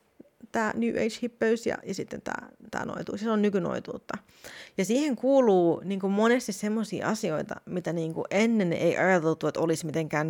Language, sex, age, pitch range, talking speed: Finnish, female, 30-49, 160-200 Hz, 170 wpm